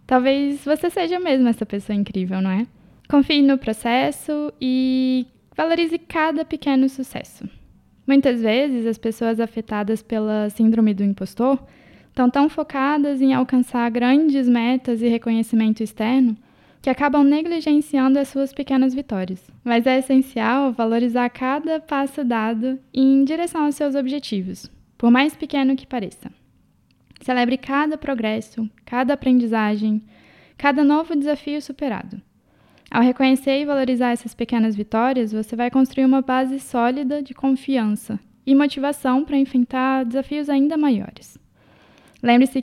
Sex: female